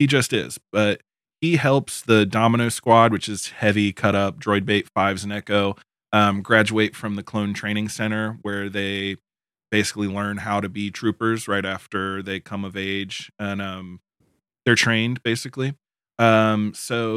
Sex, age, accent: male, 20-39, American